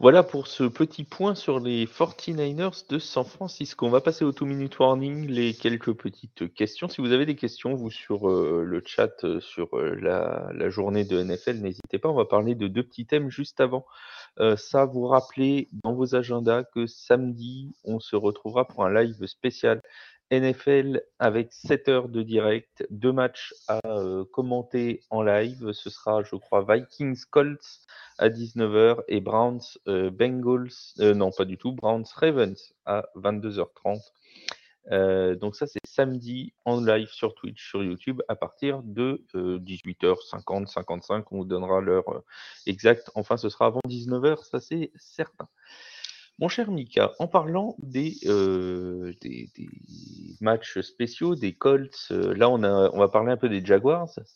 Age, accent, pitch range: 30-49, French, 105-140 Hz